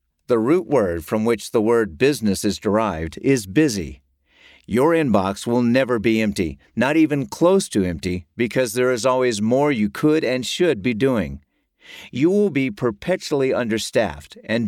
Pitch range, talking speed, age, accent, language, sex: 105-145 Hz, 165 wpm, 50-69, American, English, male